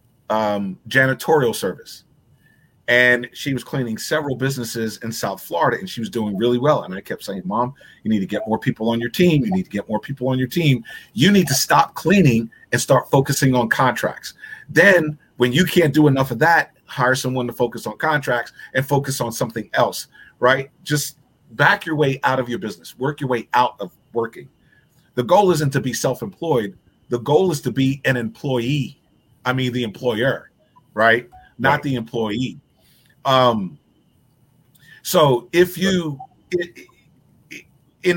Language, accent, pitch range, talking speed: English, American, 125-155 Hz, 175 wpm